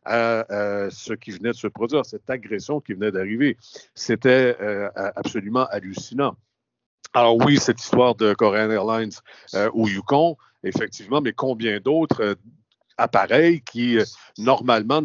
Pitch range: 100-130 Hz